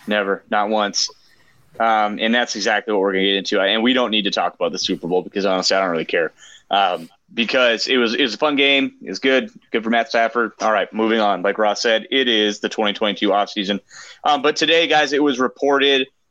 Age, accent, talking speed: 30-49, American, 235 wpm